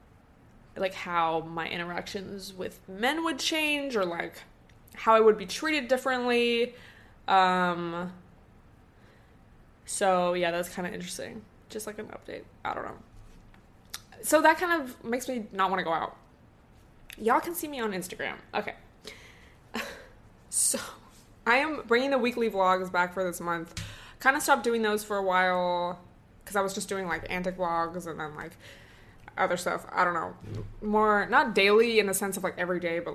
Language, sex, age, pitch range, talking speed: English, female, 20-39, 175-235 Hz, 170 wpm